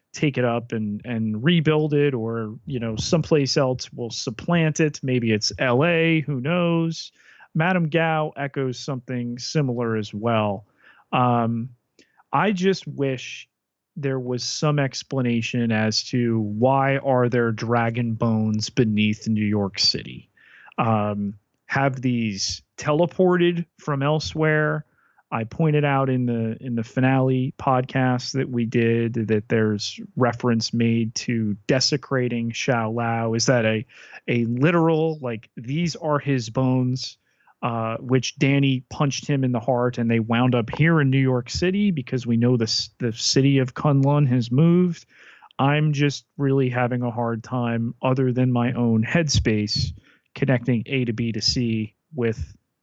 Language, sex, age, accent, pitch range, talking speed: English, male, 30-49, American, 115-140 Hz, 145 wpm